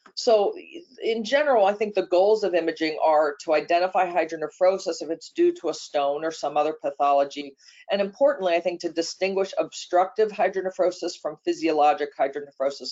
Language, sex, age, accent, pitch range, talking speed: English, female, 40-59, American, 145-190 Hz, 160 wpm